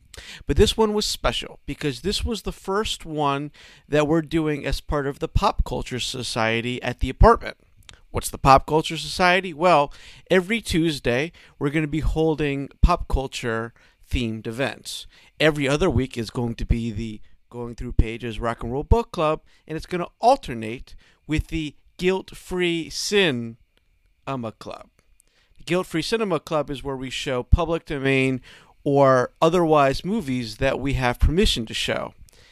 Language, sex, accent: English, male, American